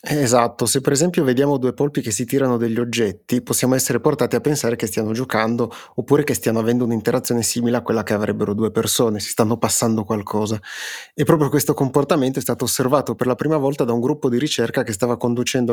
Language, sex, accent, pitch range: Italian, male, native, 115-140 Hz